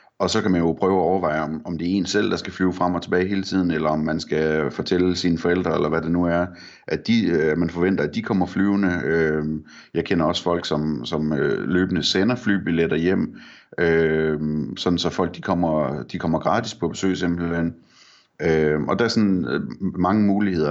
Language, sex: Danish, male